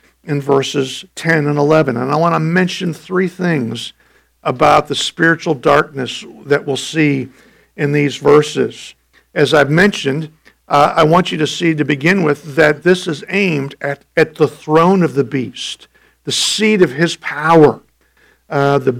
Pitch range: 145-180 Hz